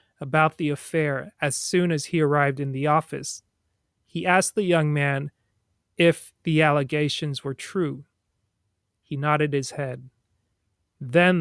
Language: English